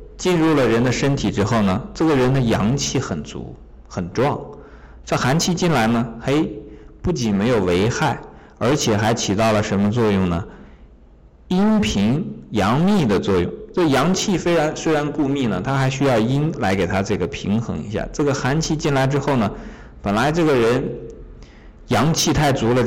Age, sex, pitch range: 50-69, male, 85-140 Hz